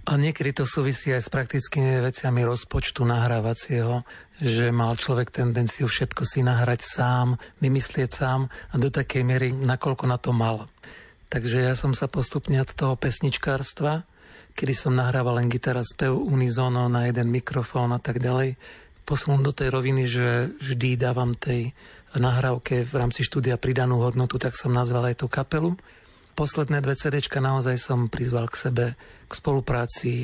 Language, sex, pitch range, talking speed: Slovak, male, 125-140 Hz, 155 wpm